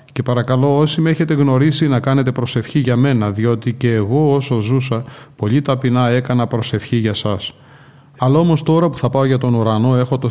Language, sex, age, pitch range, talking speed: Greek, male, 30-49, 120-140 Hz, 190 wpm